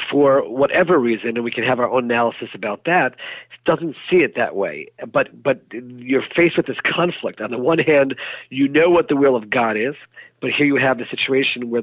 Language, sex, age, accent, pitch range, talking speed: English, male, 50-69, American, 120-145 Hz, 220 wpm